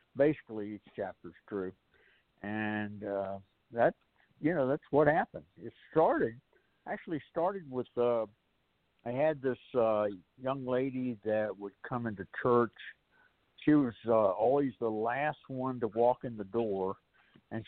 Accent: American